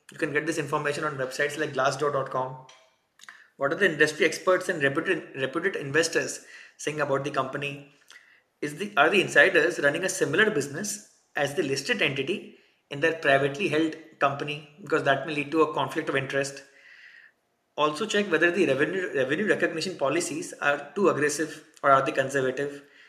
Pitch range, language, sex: 140-175 Hz, English, male